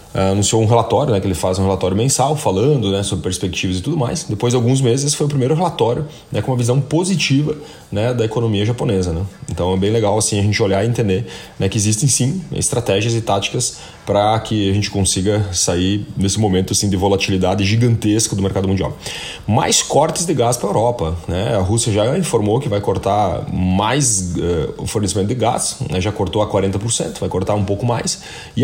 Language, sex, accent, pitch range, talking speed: Portuguese, male, Brazilian, 95-125 Hz, 205 wpm